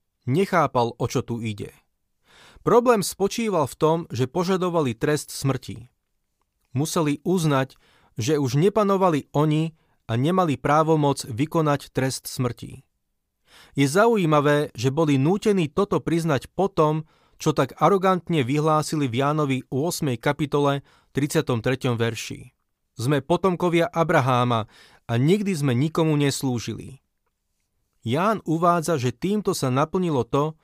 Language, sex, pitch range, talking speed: Slovak, male, 130-170 Hz, 115 wpm